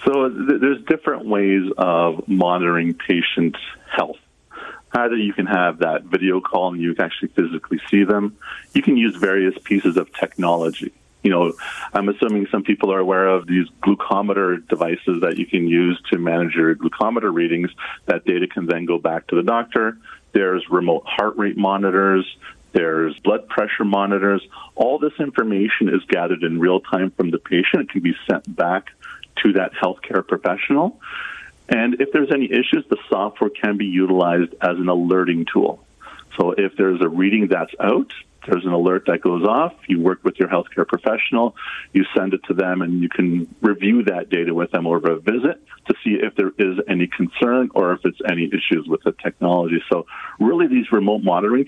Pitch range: 85-105 Hz